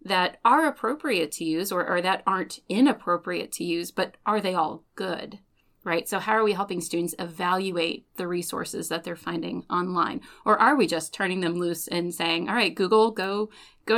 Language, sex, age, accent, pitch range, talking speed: English, female, 30-49, American, 170-195 Hz, 195 wpm